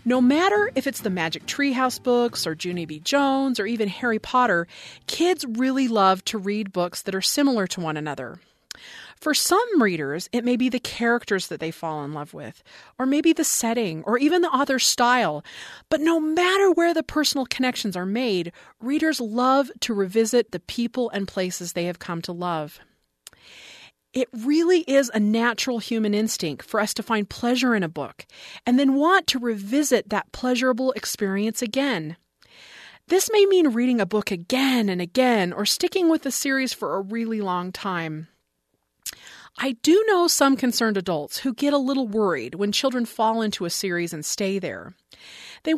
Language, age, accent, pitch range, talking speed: English, 40-59, American, 195-270 Hz, 180 wpm